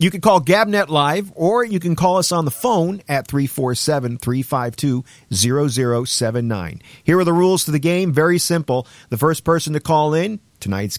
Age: 50-69